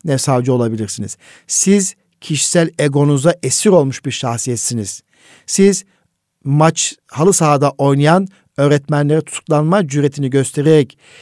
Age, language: 50-69, Turkish